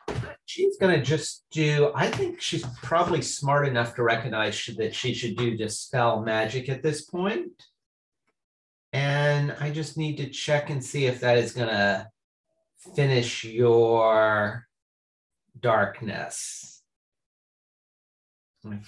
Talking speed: 120 wpm